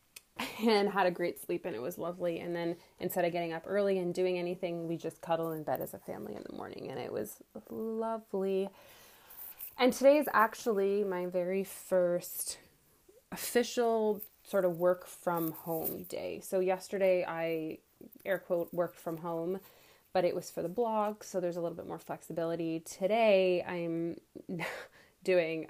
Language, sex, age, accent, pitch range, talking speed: English, female, 20-39, American, 165-195 Hz, 170 wpm